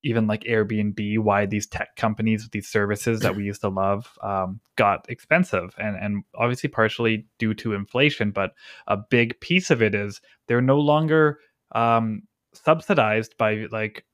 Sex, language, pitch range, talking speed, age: male, English, 105-125 Hz, 160 wpm, 20-39